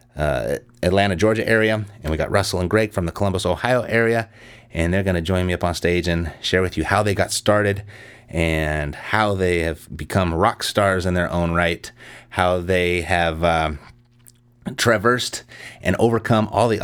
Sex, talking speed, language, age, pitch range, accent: male, 185 wpm, English, 30-49, 90-115 Hz, American